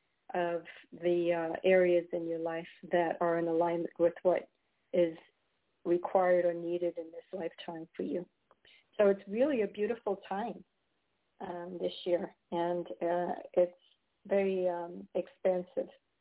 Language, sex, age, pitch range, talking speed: English, female, 50-69, 180-200 Hz, 135 wpm